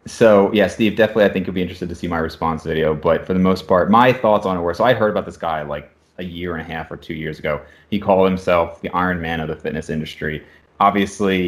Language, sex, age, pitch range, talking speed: English, male, 30-49, 85-100 Hz, 265 wpm